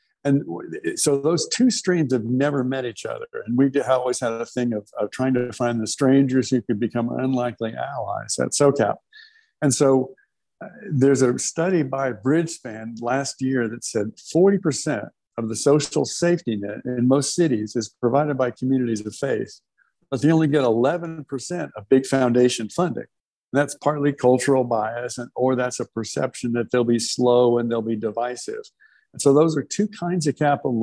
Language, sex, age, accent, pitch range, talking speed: English, male, 60-79, American, 120-145 Hz, 175 wpm